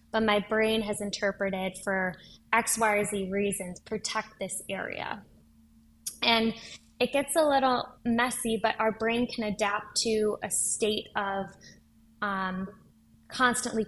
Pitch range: 195-225 Hz